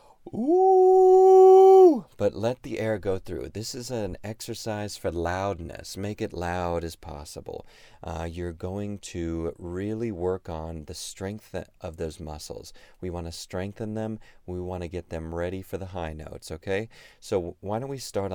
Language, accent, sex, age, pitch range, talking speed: English, American, male, 30-49, 80-100 Hz, 165 wpm